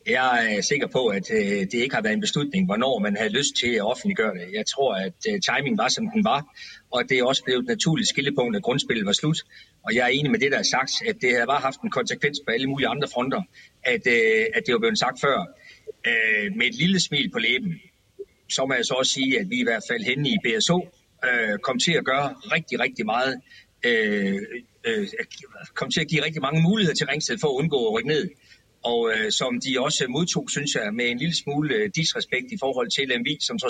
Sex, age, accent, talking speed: male, 40-59, native, 235 wpm